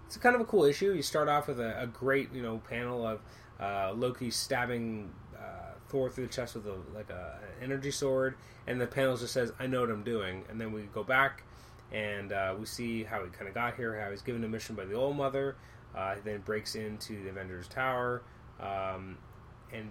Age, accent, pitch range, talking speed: 20-39, American, 100-120 Hz, 225 wpm